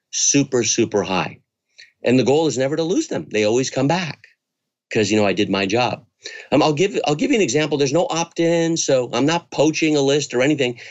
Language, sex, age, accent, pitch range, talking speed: English, male, 50-69, American, 110-150 Hz, 225 wpm